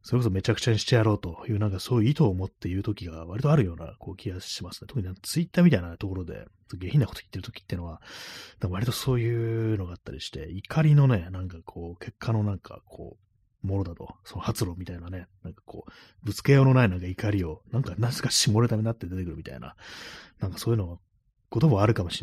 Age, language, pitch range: 30-49, Japanese, 90-115 Hz